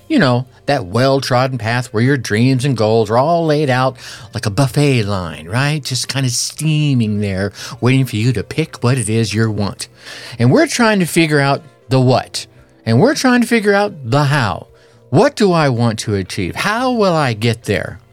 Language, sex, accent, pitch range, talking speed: English, male, American, 110-140 Hz, 200 wpm